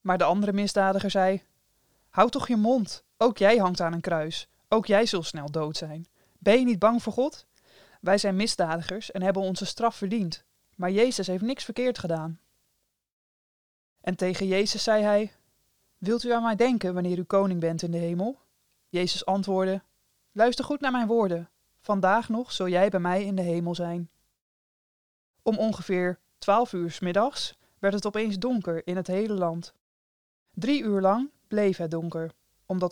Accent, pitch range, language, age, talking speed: Dutch, 175-215 Hz, Dutch, 20-39, 175 wpm